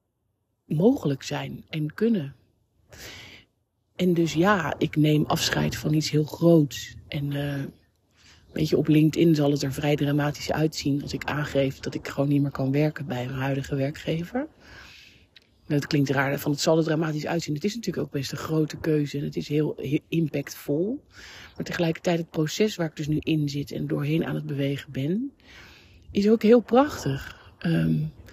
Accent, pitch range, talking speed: Dutch, 135-160 Hz, 180 wpm